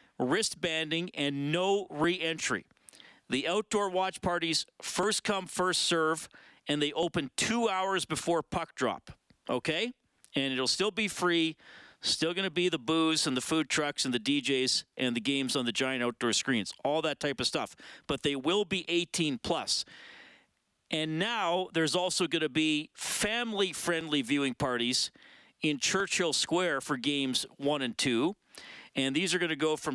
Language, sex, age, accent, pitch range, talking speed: English, male, 40-59, American, 135-175 Hz, 165 wpm